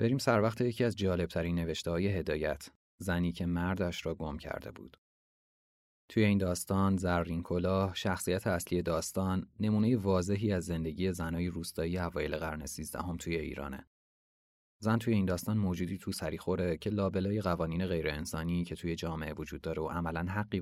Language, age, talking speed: Persian, 30-49, 160 wpm